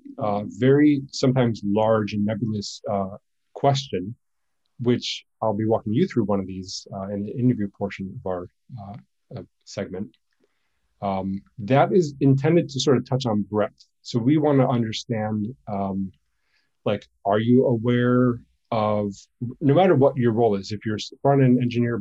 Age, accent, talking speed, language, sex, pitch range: 30-49, American, 160 wpm, English, male, 105-125 Hz